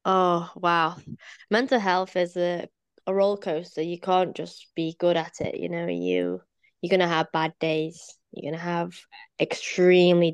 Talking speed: 165 wpm